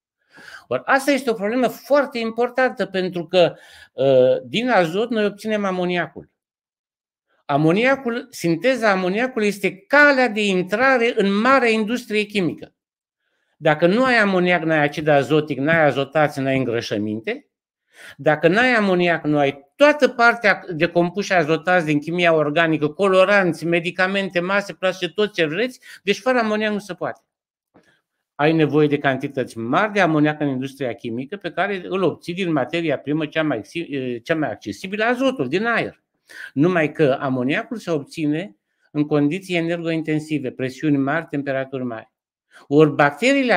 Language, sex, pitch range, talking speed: Romanian, male, 150-210 Hz, 140 wpm